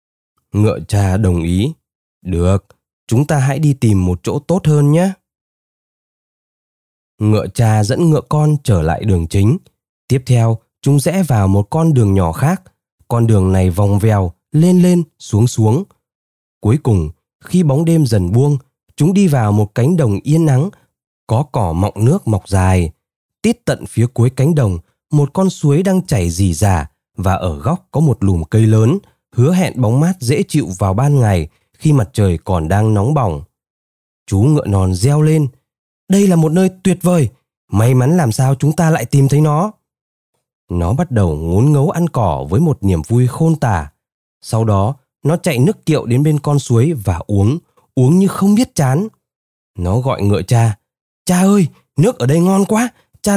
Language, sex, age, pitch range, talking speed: Vietnamese, male, 20-39, 100-160 Hz, 185 wpm